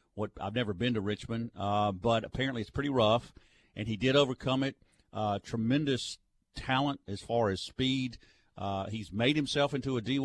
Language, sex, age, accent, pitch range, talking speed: English, male, 50-69, American, 100-130 Hz, 180 wpm